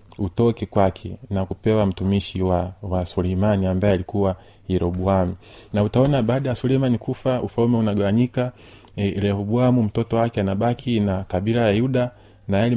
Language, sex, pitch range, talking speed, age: Swahili, male, 100-120 Hz, 135 wpm, 30-49